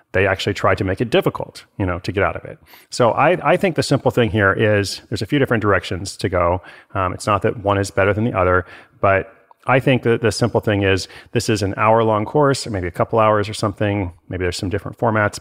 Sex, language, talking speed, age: male, English, 255 wpm, 30-49